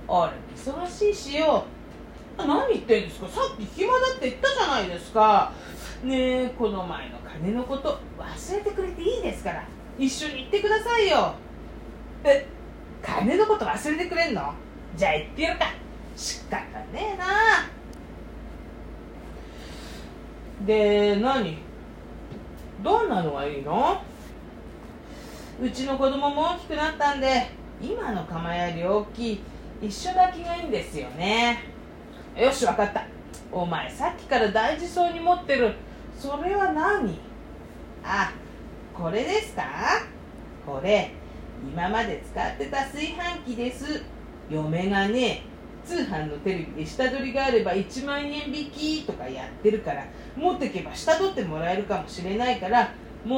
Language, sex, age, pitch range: Japanese, female, 40-59, 210-330 Hz